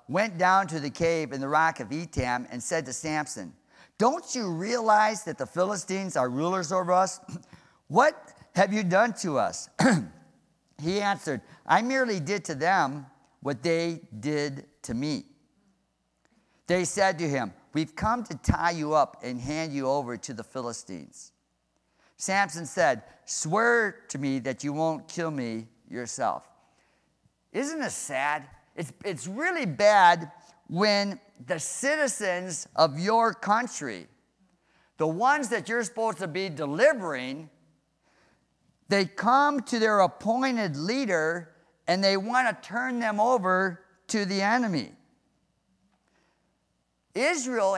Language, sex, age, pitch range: English, male, 50-69, 155-215 Hz